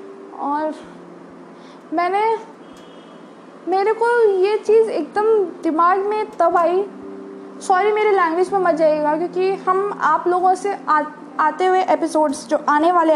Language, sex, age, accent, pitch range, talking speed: Hindi, female, 20-39, native, 300-390 Hz, 130 wpm